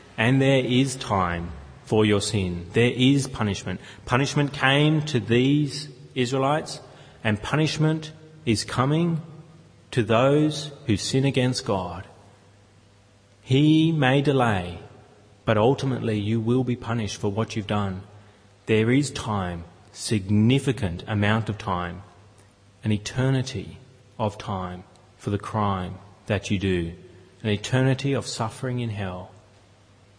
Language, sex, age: English, male, 30-49